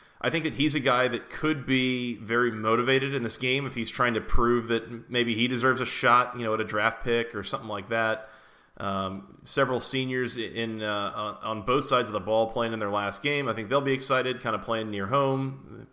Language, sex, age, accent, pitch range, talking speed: English, male, 30-49, American, 105-130 Hz, 235 wpm